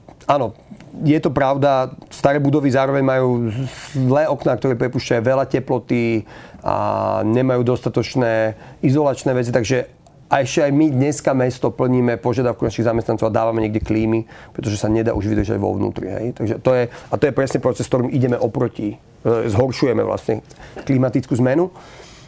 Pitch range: 120-150 Hz